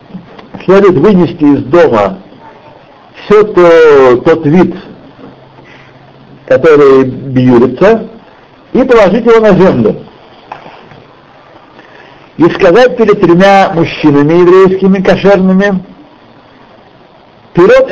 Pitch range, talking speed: 150-215 Hz, 75 wpm